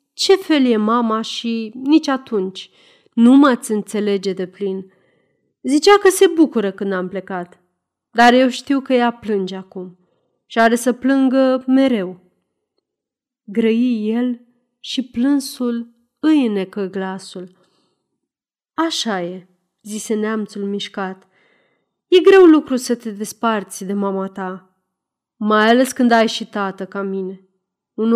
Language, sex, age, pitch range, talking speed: Romanian, female, 30-49, 195-260 Hz, 130 wpm